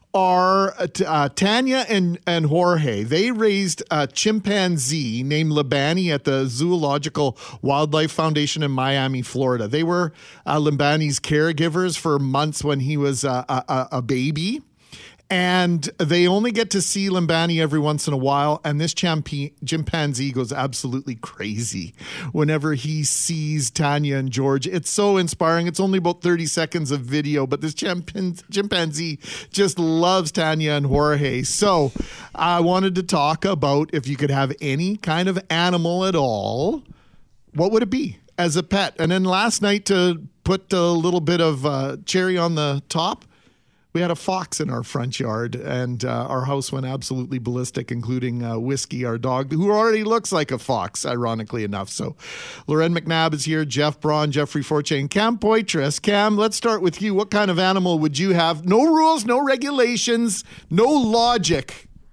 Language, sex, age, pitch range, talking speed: English, male, 40-59, 140-185 Hz, 165 wpm